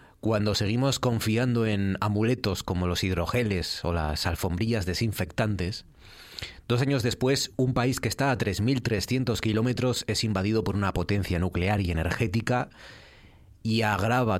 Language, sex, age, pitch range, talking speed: Spanish, male, 30-49, 90-115 Hz, 135 wpm